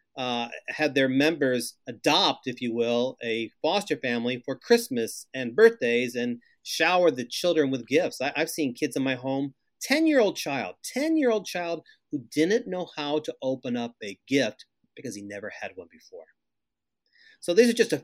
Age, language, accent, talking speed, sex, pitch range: 40-59, English, American, 170 wpm, male, 125-165 Hz